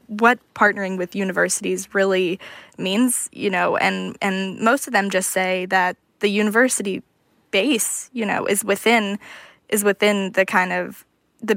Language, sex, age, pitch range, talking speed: English, female, 10-29, 195-225 Hz, 150 wpm